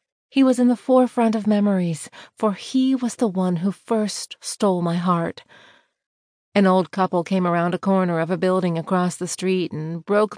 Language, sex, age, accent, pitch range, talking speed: English, female, 40-59, American, 180-220 Hz, 185 wpm